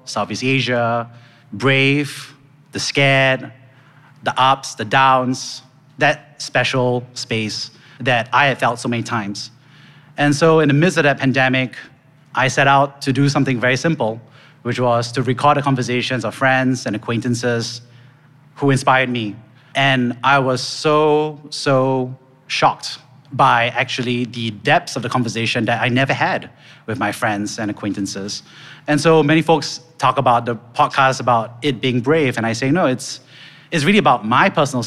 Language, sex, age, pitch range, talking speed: English, male, 30-49, 120-145 Hz, 160 wpm